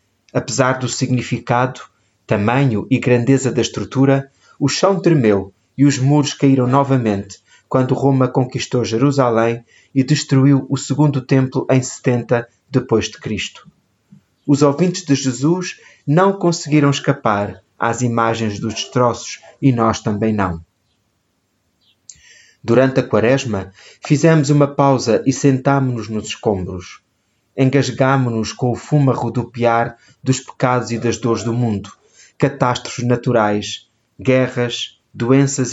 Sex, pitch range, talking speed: male, 110-135 Hz, 120 wpm